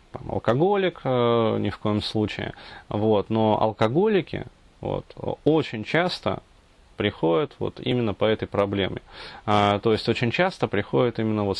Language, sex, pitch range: Russian, male, 100-125 Hz